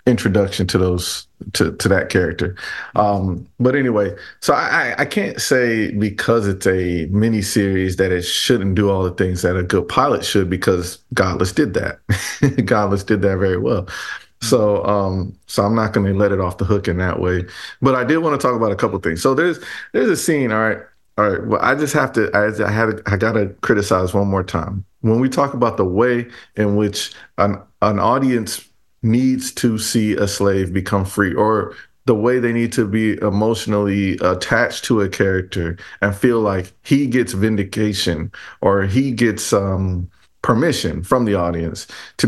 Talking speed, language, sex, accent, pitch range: 195 wpm, English, male, American, 95-115 Hz